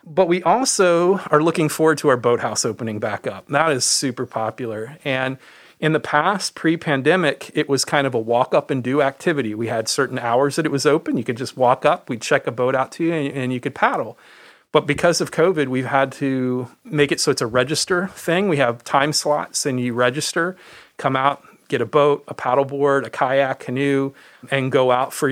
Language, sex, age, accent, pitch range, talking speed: English, male, 40-59, American, 125-150 Hz, 210 wpm